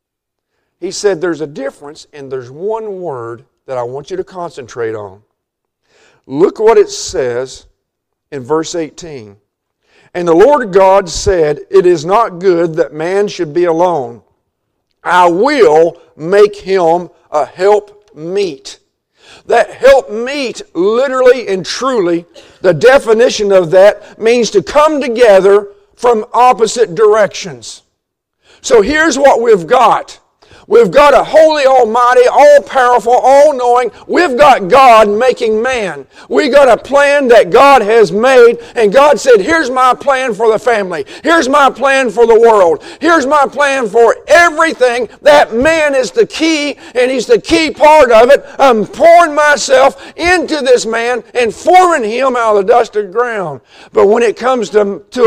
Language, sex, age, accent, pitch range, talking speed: English, male, 50-69, American, 200-320 Hz, 150 wpm